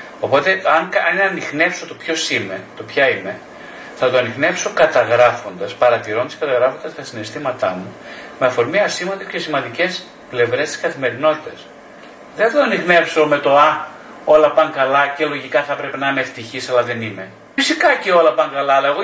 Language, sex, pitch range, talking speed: Greek, male, 130-190 Hz, 160 wpm